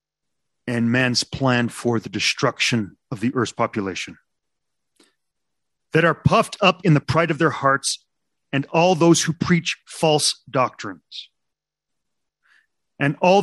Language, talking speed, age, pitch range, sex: English, 130 wpm, 40-59, 130-170 Hz, male